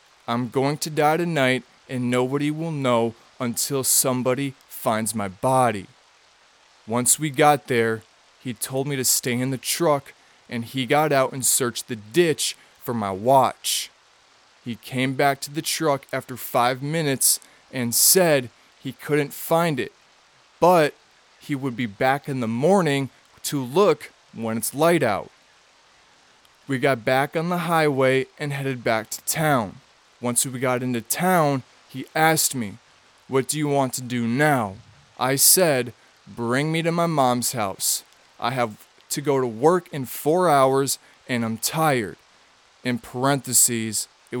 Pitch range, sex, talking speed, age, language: 120-145 Hz, male, 155 wpm, 20-39, English